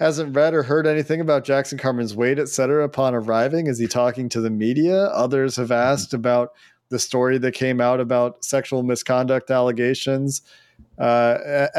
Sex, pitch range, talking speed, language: male, 120-135 Hz, 170 wpm, English